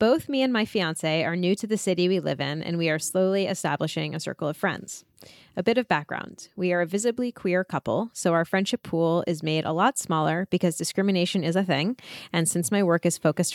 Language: English